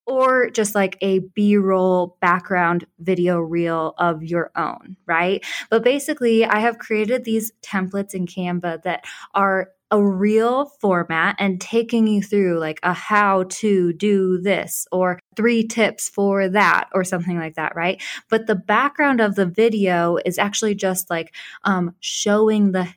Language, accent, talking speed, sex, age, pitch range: English, American, 155 wpm, female, 20-39, 180-210 Hz